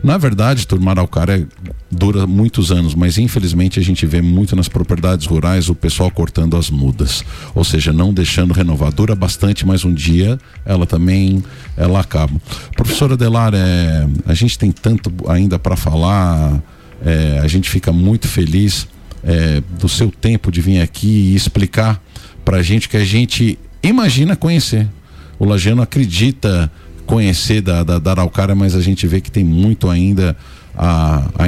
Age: 50-69